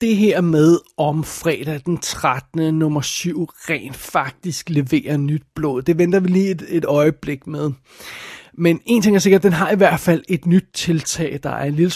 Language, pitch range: Danish, 150-180 Hz